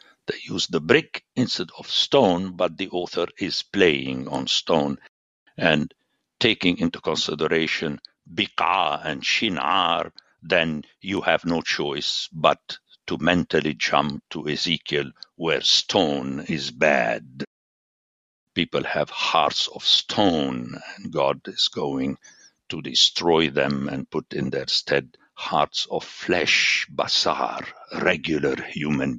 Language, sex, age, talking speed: English, male, 60-79, 120 wpm